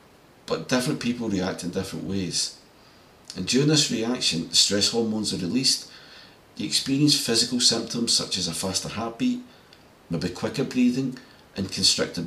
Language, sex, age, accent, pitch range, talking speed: English, male, 40-59, British, 95-130 Hz, 145 wpm